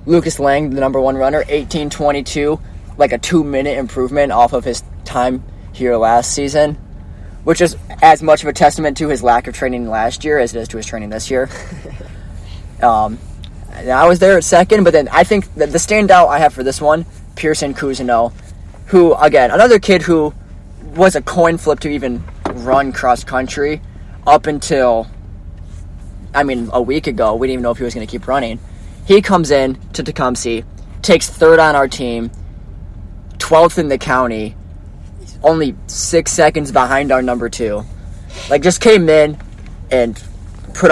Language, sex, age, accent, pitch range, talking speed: English, male, 20-39, American, 95-150 Hz, 175 wpm